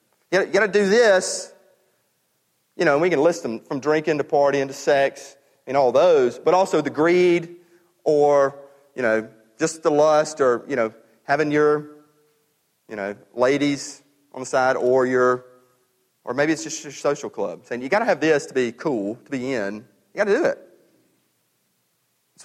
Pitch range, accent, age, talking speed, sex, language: 135-185 Hz, American, 40-59, 185 wpm, male, English